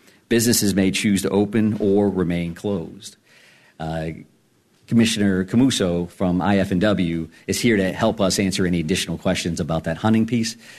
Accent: American